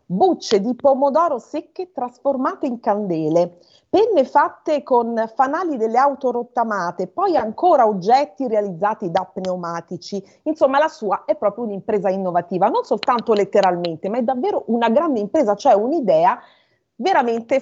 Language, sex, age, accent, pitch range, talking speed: Italian, female, 40-59, native, 195-295 Hz, 135 wpm